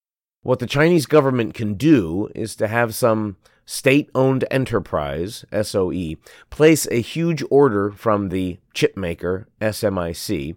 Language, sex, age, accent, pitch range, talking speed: English, male, 30-49, American, 95-125 Hz, 125 wpm